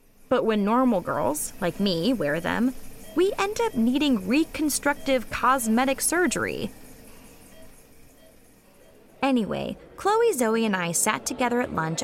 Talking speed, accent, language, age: 120 wpm, American, English, 20-39